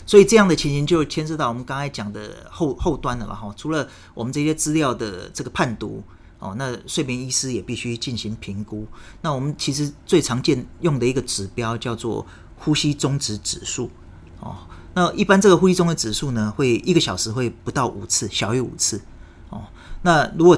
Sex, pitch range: male, 105-145 Hz